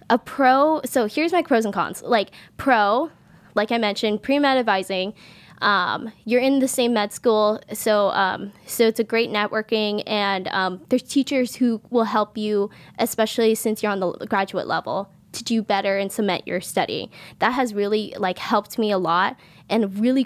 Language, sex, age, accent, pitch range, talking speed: English, female, 10-29, American, 200-245 Hz, 180 wpm